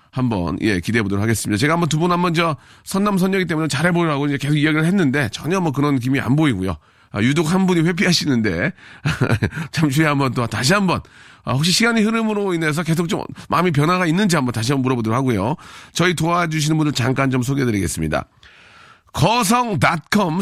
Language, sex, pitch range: Korean, male, 130-180 Hz